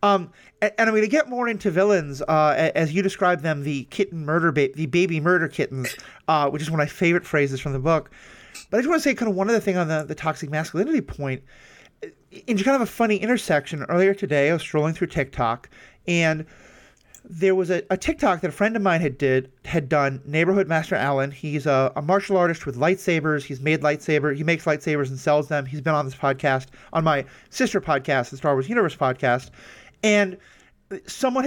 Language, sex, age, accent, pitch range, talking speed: English, male, 30-49, American, 150-195 Hz, 210 wpm